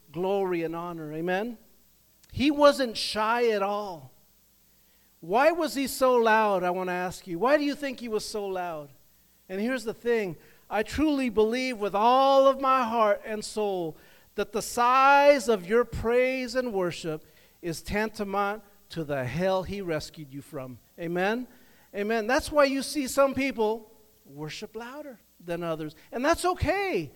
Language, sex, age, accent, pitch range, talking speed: English, male, 50-69, American, 175-235 Hz, 160 wpm